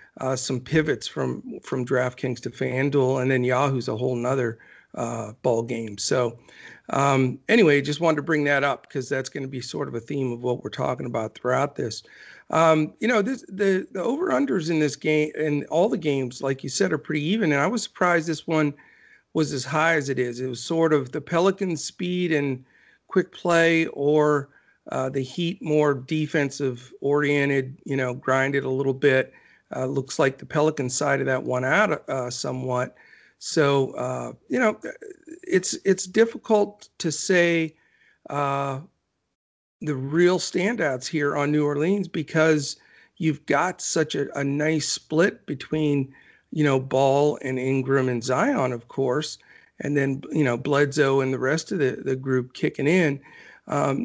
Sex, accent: male, American